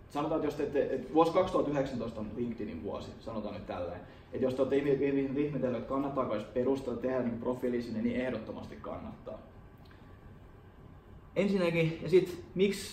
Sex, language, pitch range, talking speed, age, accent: male, Finnish, 115-140 Hz, 155 wpm, 20-39, native